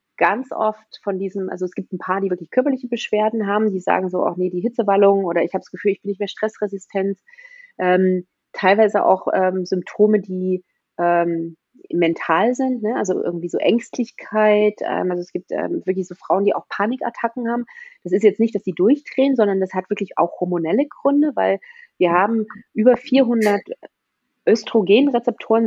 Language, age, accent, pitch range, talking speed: German, 30-49, German, 185-235 Hz, 180 wpm